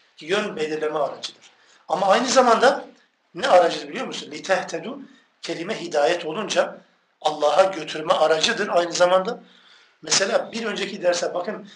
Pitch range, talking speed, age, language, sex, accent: 160-215 Hz, 130 wpm, 50-69, Turkish, male, native